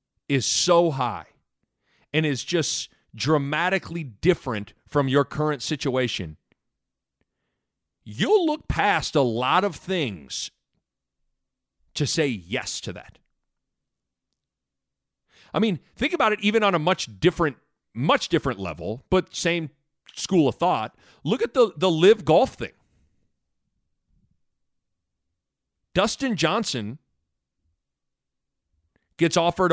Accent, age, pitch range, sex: American, 40-59, 130-185 Hz, male